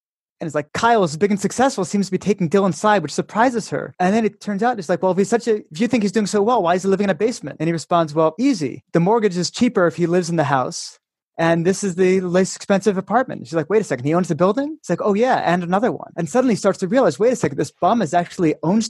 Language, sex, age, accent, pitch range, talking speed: English, male, 30-49, American, 170-220 Hz, 300 wpm